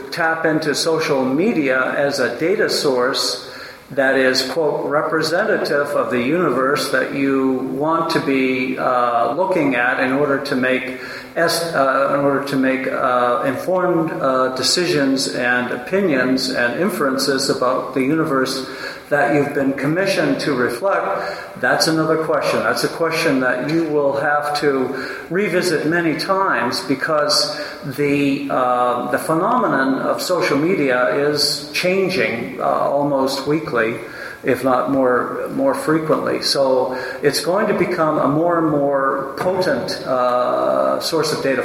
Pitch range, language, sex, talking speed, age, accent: 135-160 Hz, English, male, 135 wpm, 60-79, American